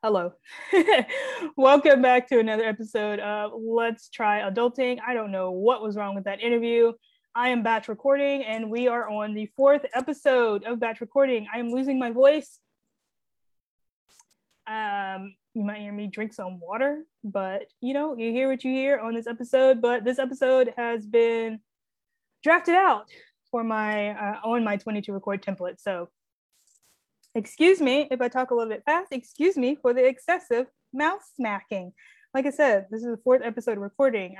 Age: 20-39